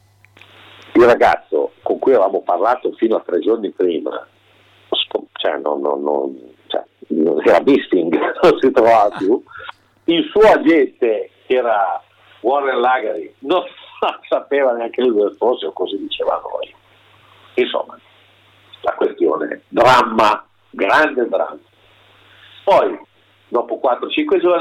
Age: 50-69